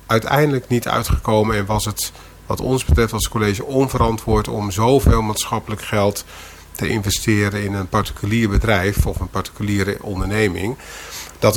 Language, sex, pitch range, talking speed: Dutch, male, 95-115 Hz, 140 wpm